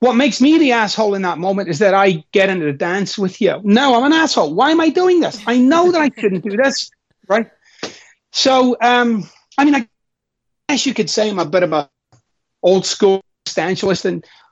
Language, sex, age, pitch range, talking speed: English, male, 30-49, 185-245 Hz, 220 wpm